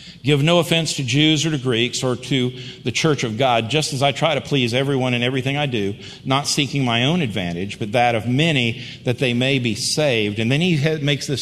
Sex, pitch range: male, 135-175 Hz